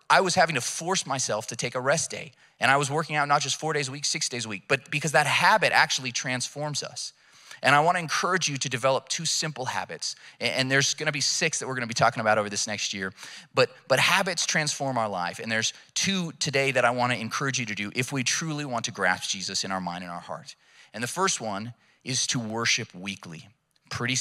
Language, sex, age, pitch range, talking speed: English, male, 30-49, 120-150 Hz, 240 wpm